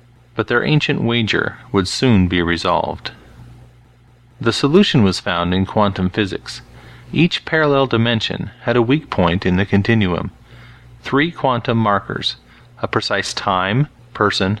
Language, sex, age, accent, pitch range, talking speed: English, male, 40-59, American, 95-120 Hz, 130 wpm